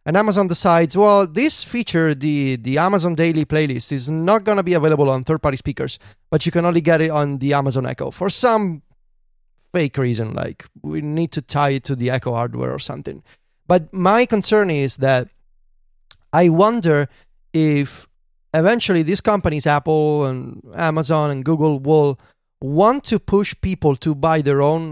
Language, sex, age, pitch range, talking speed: English, male, 30-49, 135-180 Hz, 170 wpm